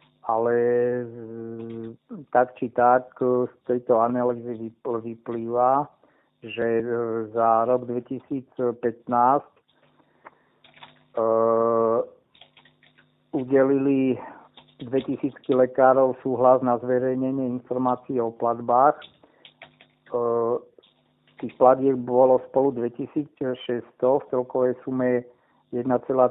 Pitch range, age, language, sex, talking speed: 115-130 Hz, 50-69, Slovak, male, 75 wpm